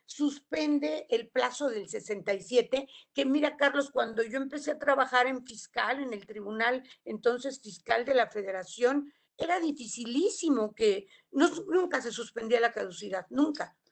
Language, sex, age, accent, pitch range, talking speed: Spanish, female, 50-69, Mexican, 235-295 Hz, 140 wpm